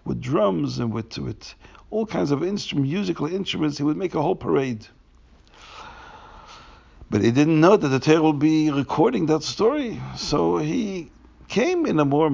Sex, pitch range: male, 110-155 Hz